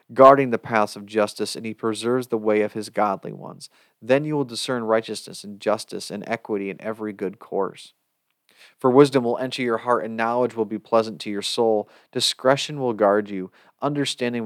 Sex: male